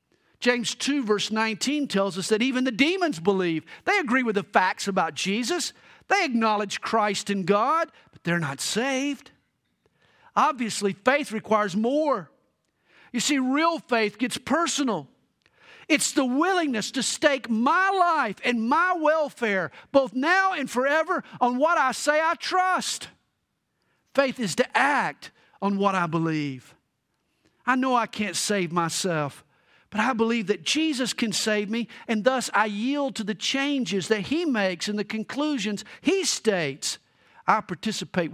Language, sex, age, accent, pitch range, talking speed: English, male, 50-69, American, 200-280 Hz, 150 wpm